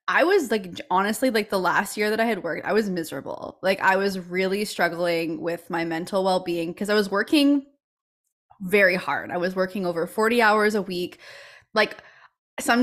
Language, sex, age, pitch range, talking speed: English, female, 20-39, 180-220 Hz, 185 wpm